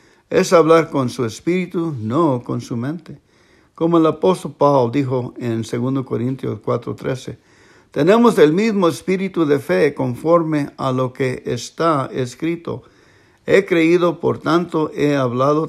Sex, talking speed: male, 140 wpm